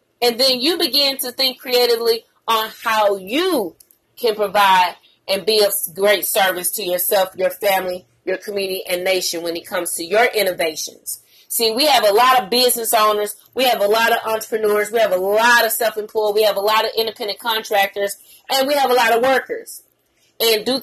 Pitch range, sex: 220-280 Hz, female